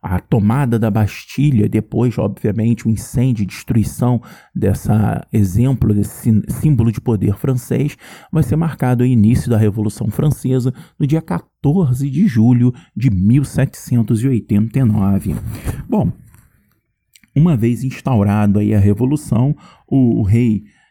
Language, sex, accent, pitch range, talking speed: Portuguese, male, Brazilian, 110-145 Hz, 125 wpm